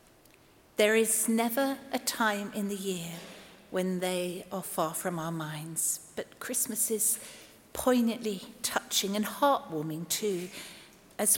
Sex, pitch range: female, 185-230 Hz